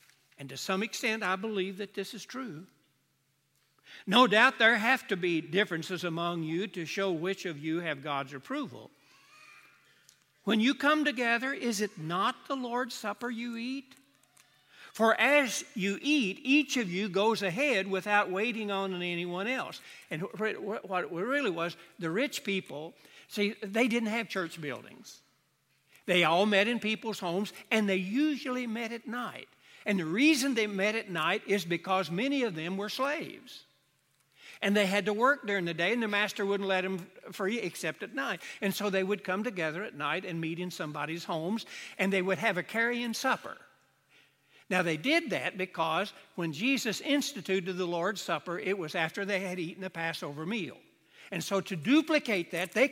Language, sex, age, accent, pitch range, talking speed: English, male, 60-79, American, 175-235 Hz, 180 wpm